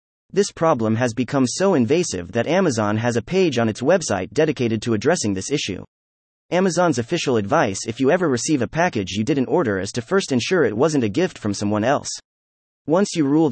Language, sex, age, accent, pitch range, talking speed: English, male, 30-49, American, 105-155 Hz, 200 wpm